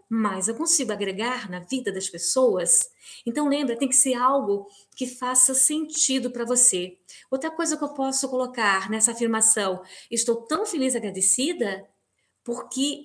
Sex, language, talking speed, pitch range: female, Portuguese, 150 wpm, 200-260 Hz